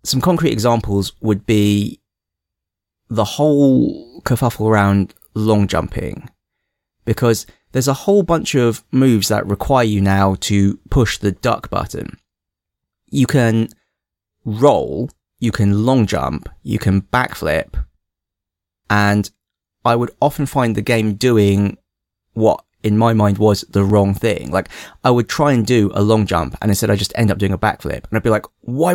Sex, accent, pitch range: male, British, 100-120 Hz